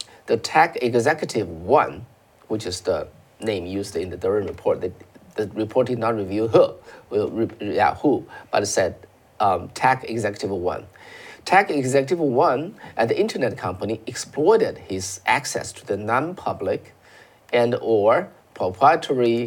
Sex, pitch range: male, 110-165 Hz